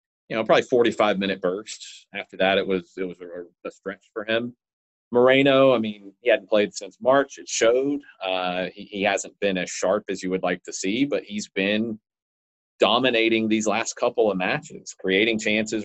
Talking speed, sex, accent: 190 wpm, male, American